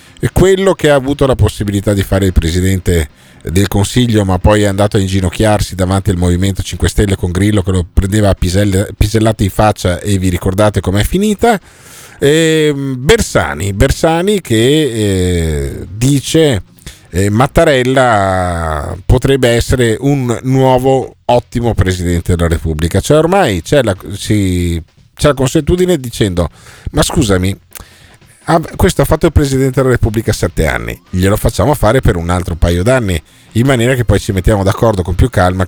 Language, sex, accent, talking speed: Italian, male, native, 155 wpm